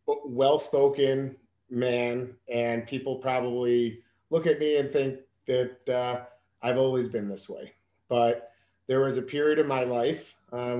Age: 30-49